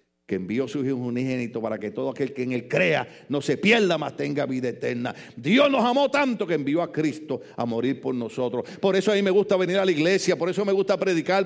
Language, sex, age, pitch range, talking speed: Spanish, male, 50-69, 145-240 Hz, 245 wpm